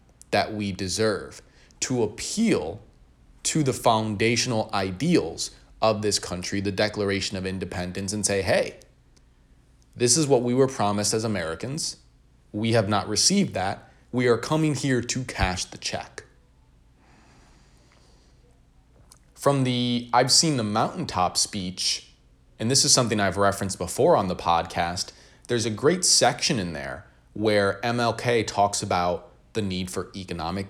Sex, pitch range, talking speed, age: male, 95-120 Hz, 140 wpm, 20-39